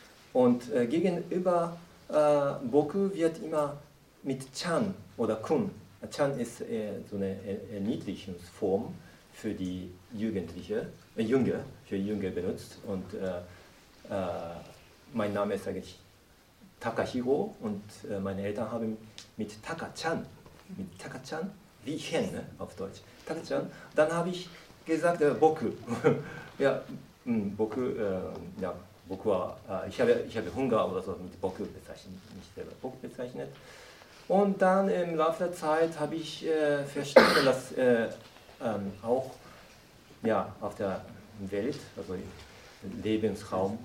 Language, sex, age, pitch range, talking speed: German, male, 40-59, 100-160 Hz, 125 wpm